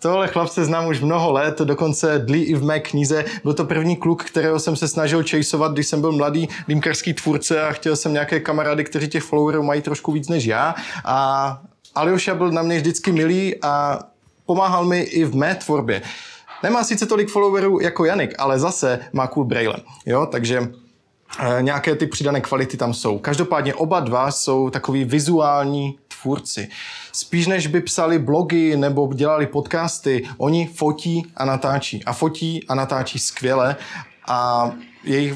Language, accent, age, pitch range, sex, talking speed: Czech, native, 20-39, 135-165 Hz, male, 170 wpm